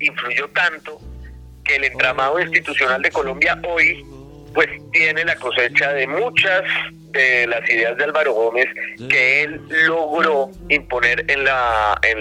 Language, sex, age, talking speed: Spanish, male, 40-59, 140 wpm